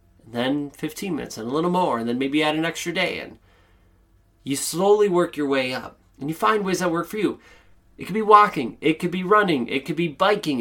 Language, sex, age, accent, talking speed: English, male, 30-49, American, 230 wpm